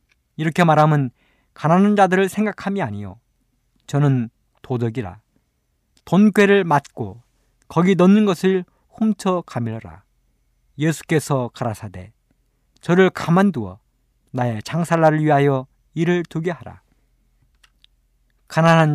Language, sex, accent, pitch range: Korean, male, native, 115-180 Hz